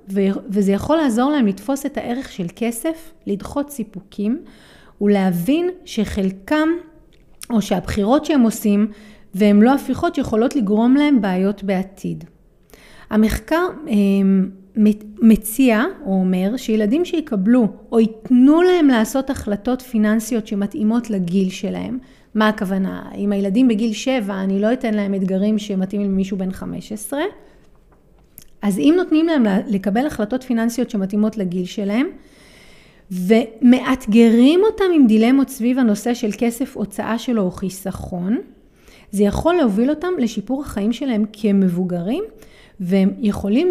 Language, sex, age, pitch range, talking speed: Hebrew, female, 30-49, 200-255 Hz, 120 wpm